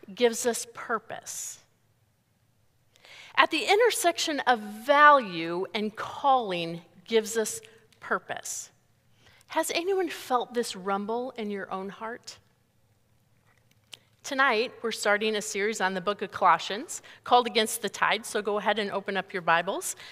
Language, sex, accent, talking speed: English, female, American, 130 wpm